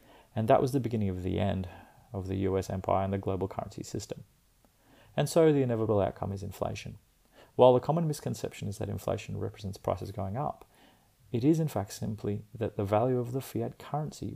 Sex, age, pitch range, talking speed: male, 30-49, 100-120 Hz, 195 wpm